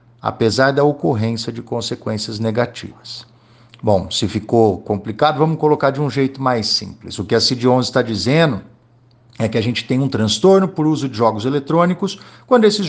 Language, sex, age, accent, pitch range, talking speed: Portuguese, male, 50-69, Brazilian, 115-150 Hz, 170 wpm